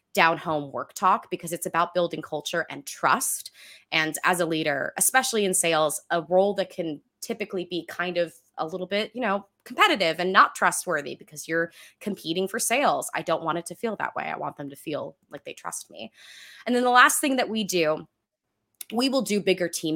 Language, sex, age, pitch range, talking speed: English, female, 20-39, 165-210 Hz, 210 wpm